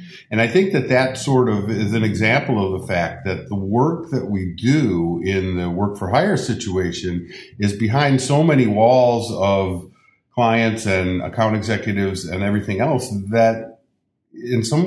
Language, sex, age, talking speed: English, male, 50-69, 165 wpm